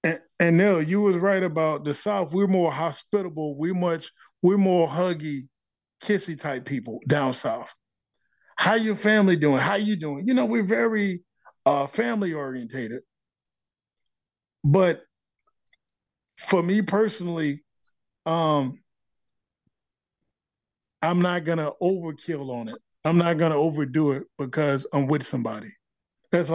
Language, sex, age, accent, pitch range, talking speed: English, male, 20-39, American, 135-175 Hz, 135 wpm